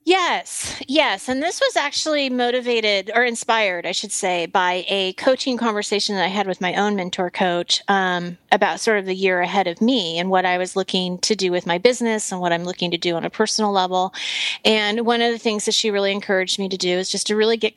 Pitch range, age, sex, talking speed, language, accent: 185-245 Hz, 30-49, female, 235 wpm, English, American